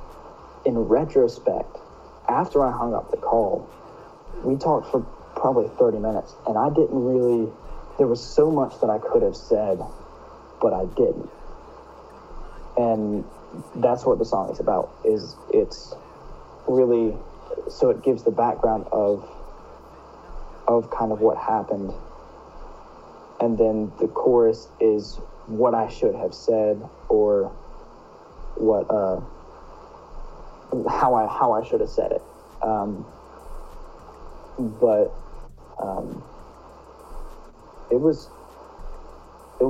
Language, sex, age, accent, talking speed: English, male, 30-49, American, 120 wpm